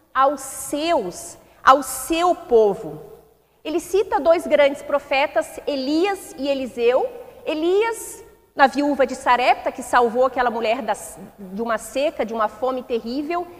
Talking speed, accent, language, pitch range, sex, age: 130 wpm, Brazilian, Portuguese, 265-350 Hz, female, 30-49